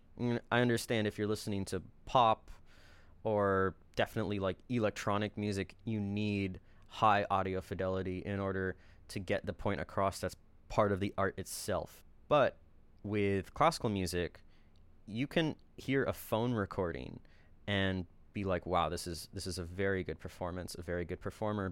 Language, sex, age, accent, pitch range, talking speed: English, male, 20-39, American, 90-105 Hz, 155 wpm